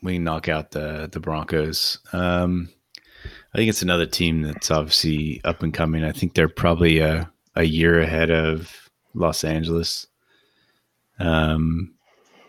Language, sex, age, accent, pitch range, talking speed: English, male, 30-49, American, 80-85 Hz, 145 wpm